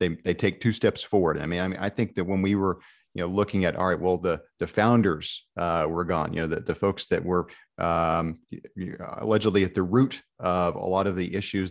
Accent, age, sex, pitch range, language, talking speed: American, 40-59, male, 85-105 Hz, English, 240 wpm